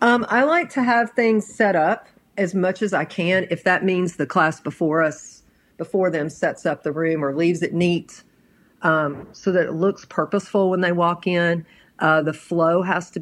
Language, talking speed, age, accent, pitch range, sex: English, 205 wpm, 50-69, American, 155-185 Hz, female